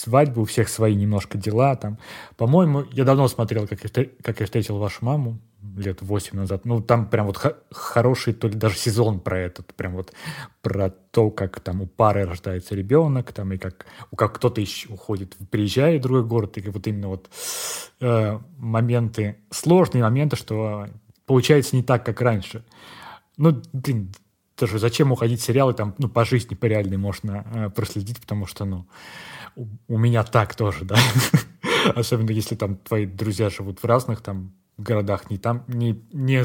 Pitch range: 105-125 Hz